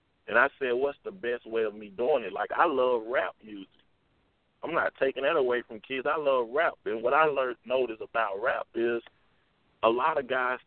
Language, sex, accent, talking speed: English, male, American, 210 wpm